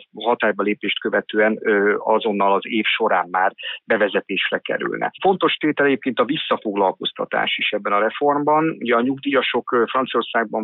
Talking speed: 125 wpm